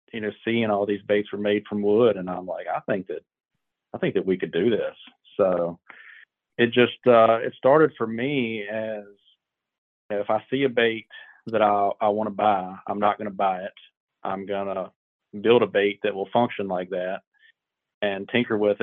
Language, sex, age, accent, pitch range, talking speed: English, male, 40-59, American, 100-115 Hz, 200 wpm